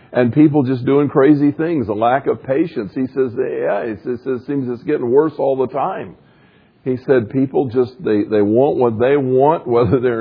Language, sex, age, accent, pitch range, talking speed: English, male, 50-69, American, 130-175 Hz, 205 wpm